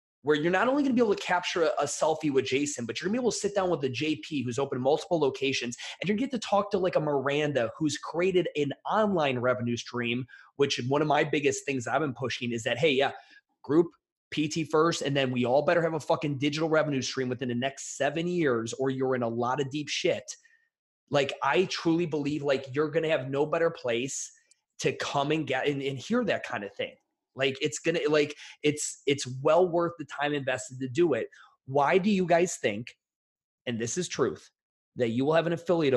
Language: English